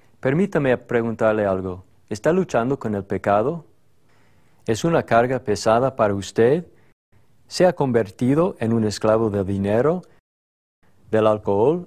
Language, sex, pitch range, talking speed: Spanish, male, 105-130 Hz, 120 wpm